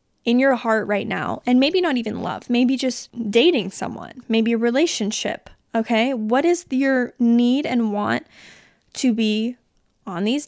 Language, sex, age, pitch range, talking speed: English, female, 20-39, 220-255 Hz, 160 wpm